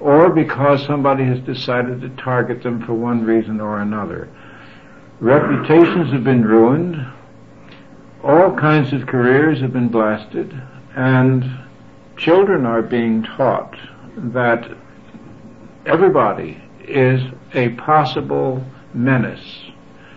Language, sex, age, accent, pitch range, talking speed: English, male, 60-79, American, 120-135 Hz, 105 wpm